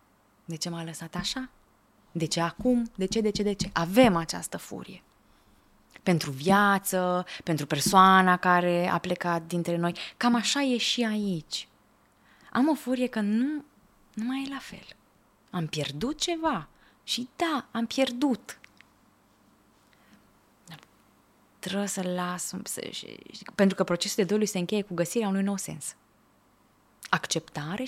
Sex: female